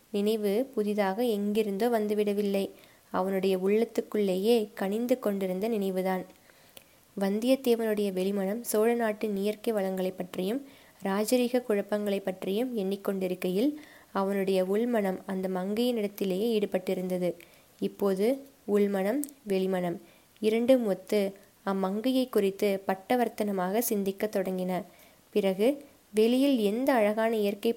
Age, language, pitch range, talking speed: 20-39, Tamil, 195-235 Hz, 90 wpm